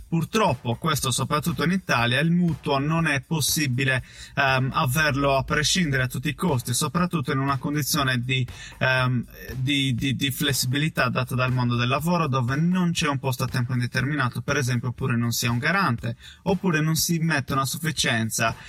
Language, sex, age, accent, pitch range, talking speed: Italian, male, 20-39, native, 125-160 Hz, 170 wpm